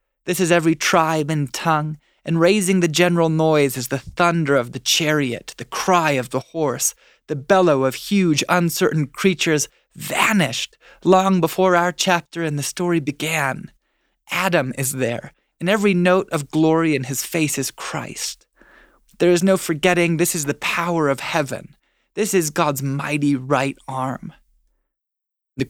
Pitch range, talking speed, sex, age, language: 145-175 Hz, 155 wpm, male, 20-39, English